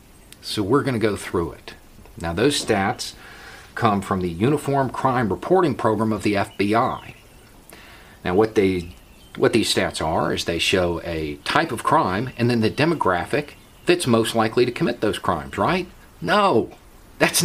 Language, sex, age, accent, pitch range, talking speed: English, male, 50-69, American, 100-135 Hz, 160 wpm